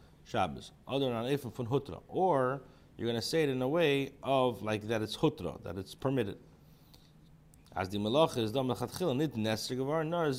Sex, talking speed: male, 185 wpm